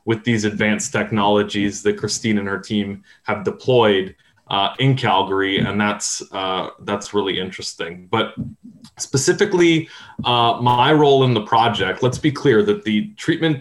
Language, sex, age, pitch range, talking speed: English, male, 20-39, 105-125 Hz, 150 wpm